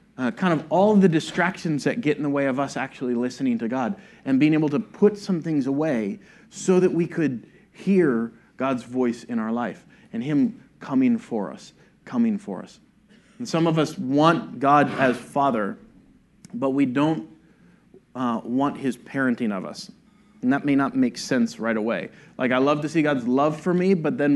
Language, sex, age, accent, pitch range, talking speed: English, male, 30-49, American, 140-205 Hz, 195 wpm